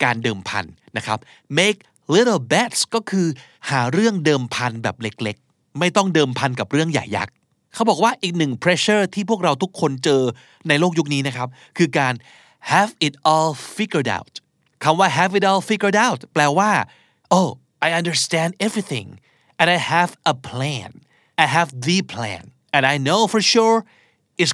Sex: male